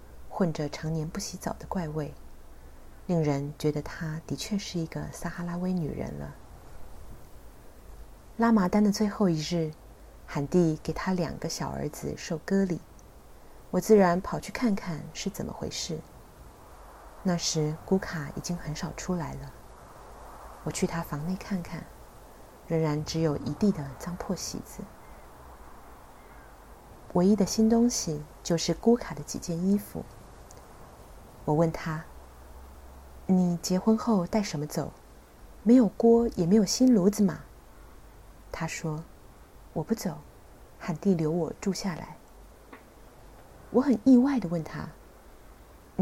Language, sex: Chinese, female